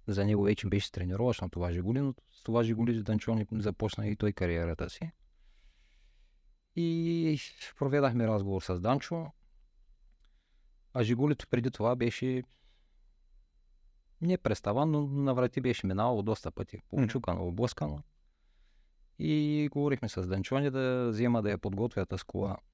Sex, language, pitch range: male, Bulgarian, 85-125 Hz